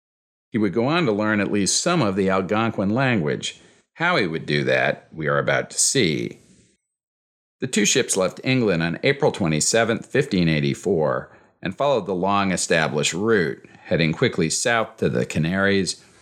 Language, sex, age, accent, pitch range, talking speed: English, male, 50-69, American, 75-95 Hz, 165 wpm